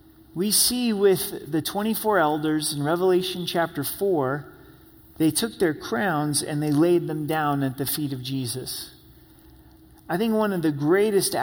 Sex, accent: male, American